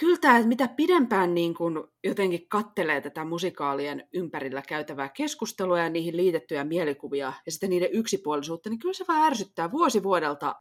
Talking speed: 165 wpm